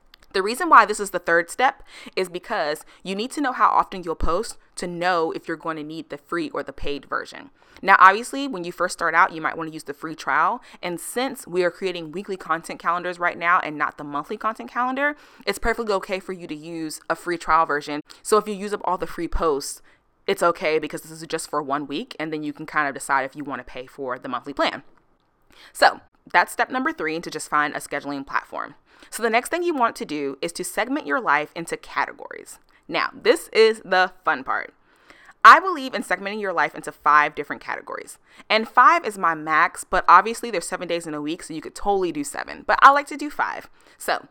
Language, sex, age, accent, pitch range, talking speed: English, female, 20-39, American, 155-235 Hz, 235 wpm